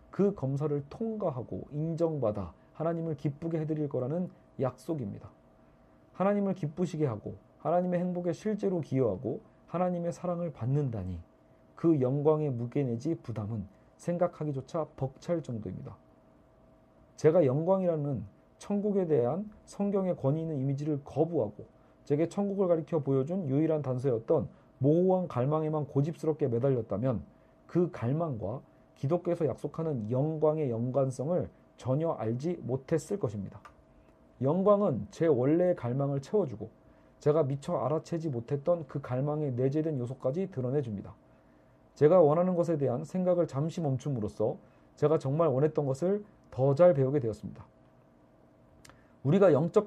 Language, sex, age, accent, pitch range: Korean, male, 40-59, native, 130-170 Hz